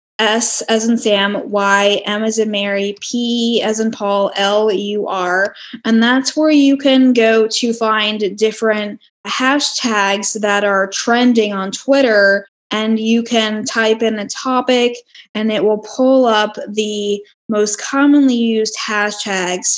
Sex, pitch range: female, 205-225 Hz